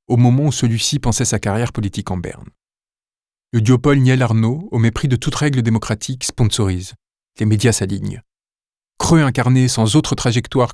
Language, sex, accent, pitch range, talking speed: French, male, French, 105-125 Hz, 160 wpm